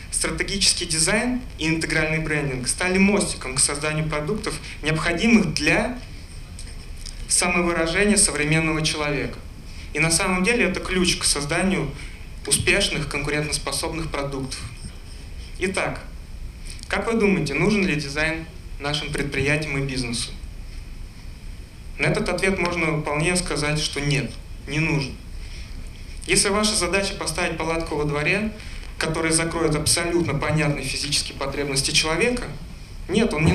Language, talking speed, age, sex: Russian, 115 wpm, 30-49, male